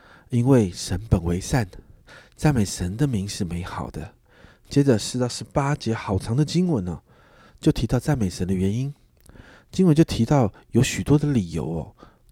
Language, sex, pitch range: Chinese, male, 90-125 Hz